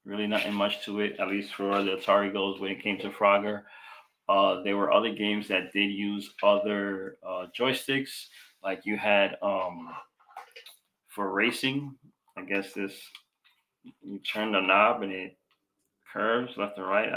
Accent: American